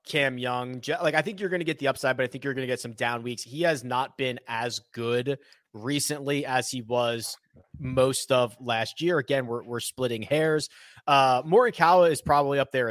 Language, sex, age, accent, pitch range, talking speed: English, male, 20-39, American, 125-155 Hz, 215 wpm